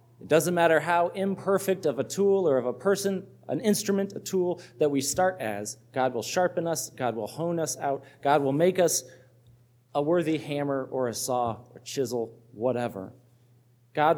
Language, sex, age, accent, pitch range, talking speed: English, male, 40-59, American, 120-170 Hz, 180 wpm